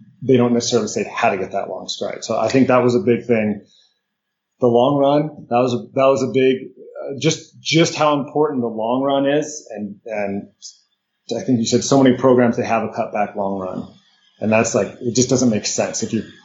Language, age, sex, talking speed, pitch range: English, 30-49, male, 225 wpm, 120-150 Hz